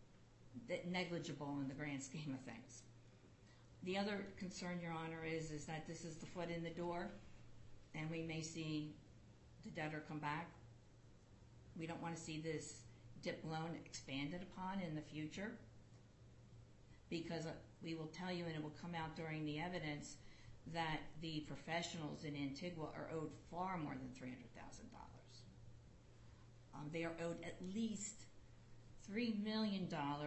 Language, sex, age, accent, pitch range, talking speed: English, female, 50-69, American, 140-175 Hz, 155 wpm